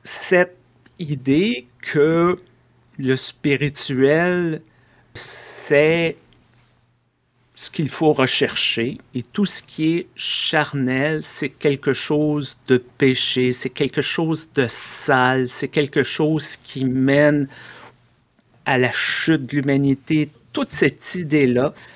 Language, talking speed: French, 105 wpm